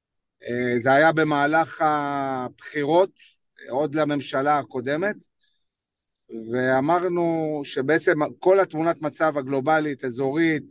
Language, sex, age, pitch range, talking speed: Hebrew, male, 40-59, 150-180 Hz, 90 wpm